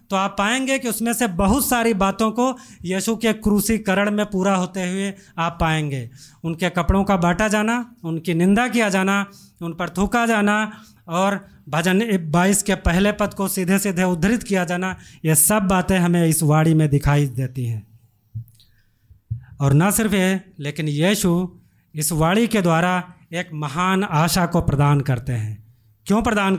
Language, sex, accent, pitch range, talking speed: Hindi, male, native, 160-215 Hz, 165 wpm